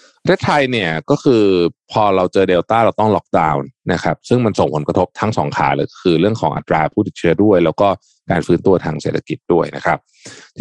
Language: Thai